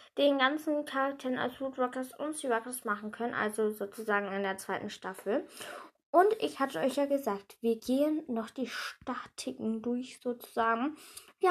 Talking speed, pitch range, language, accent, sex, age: 150 wpm, 235-320 Hz, German, German, female, 10-29